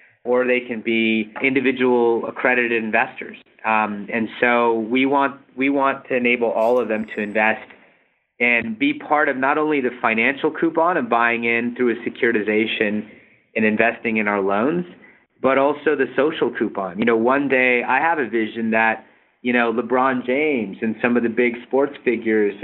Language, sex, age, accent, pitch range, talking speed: English, male, 30-49, American, 115-130 Hz, 175 wpm